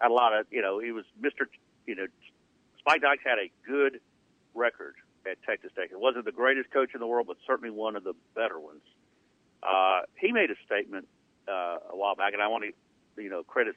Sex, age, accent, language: male, 60-79, American, English